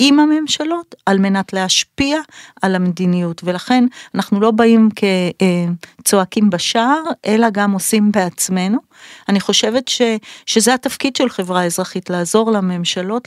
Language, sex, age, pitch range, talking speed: Hebrew, female, 40-59, 190-225 Hz, 120 wpm